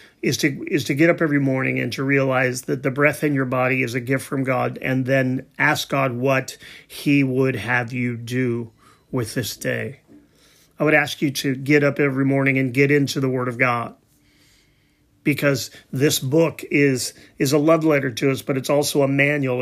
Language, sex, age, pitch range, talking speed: English, male, 40-59, 130-150 Hz, 200 wpm